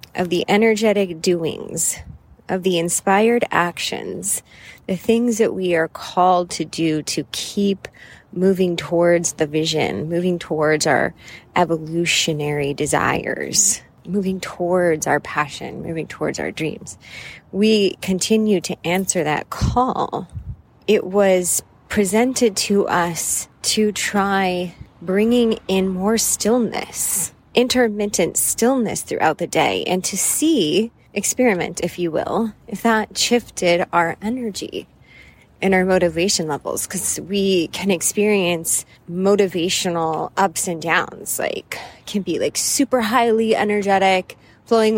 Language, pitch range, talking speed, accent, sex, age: English, 170-205 Hz, 120 wpm, American, female, 20-39